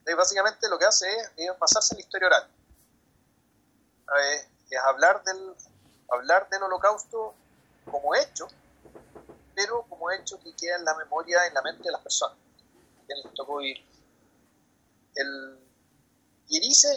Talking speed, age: 140 wpm, 40-59